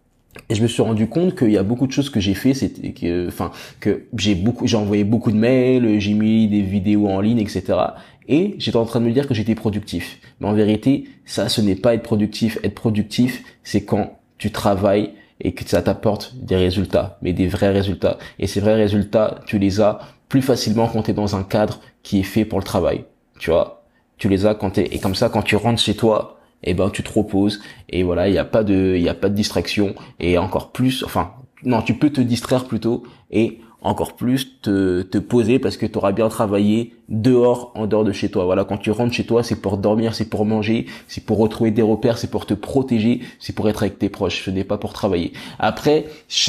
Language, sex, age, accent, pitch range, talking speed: French, male, 20-39, French, 100-115 Hz, 240 wpm